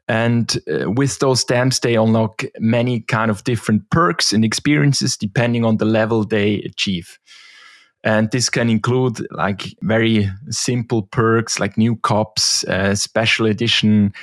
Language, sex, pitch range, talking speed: English, male, 105-125 Hz, 145 wpm